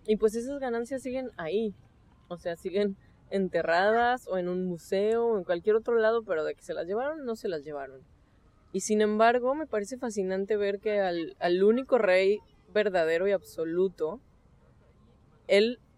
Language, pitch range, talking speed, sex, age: Spanish, 170-220 Hz, 170 wpm, female, 20-39